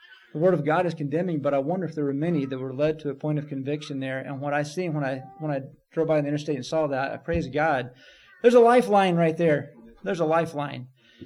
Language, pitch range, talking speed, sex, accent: English, 150-190 Hz, 255 wpm, male, American